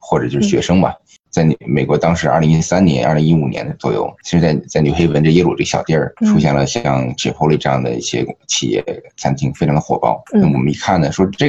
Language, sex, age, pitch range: Chinese, male, 20-39, 80-110 Hz